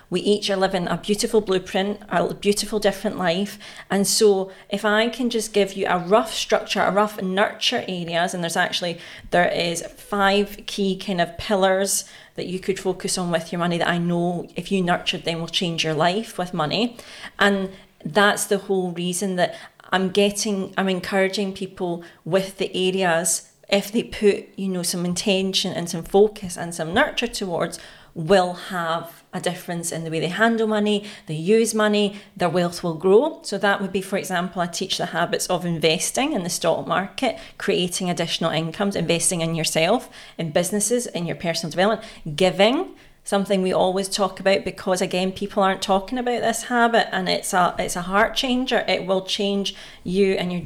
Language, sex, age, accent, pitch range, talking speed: English, female, 40-59, British, 175-205 Hz, 185 wpm